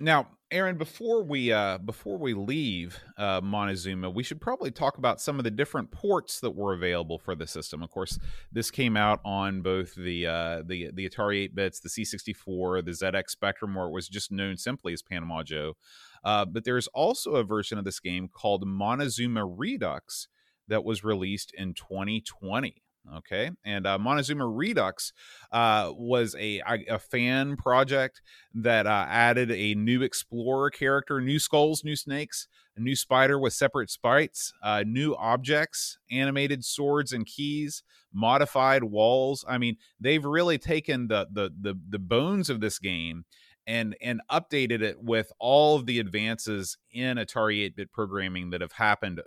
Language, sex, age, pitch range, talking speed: English, male, 30-49, 95-130 Hz, 170 wpm